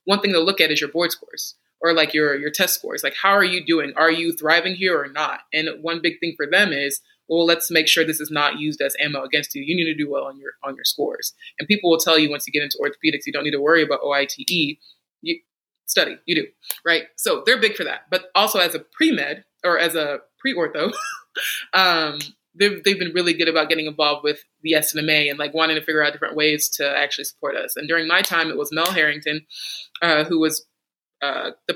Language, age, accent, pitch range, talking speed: English, 20-39, American, 155-180 Hz, 240 wpm